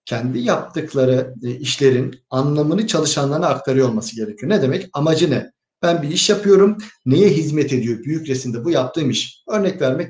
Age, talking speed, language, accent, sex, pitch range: 50-69, 155 wpm, Turkish, native, male, 135-195 Hz